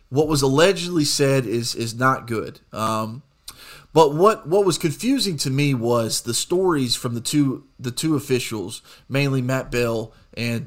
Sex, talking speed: male, 165 wpm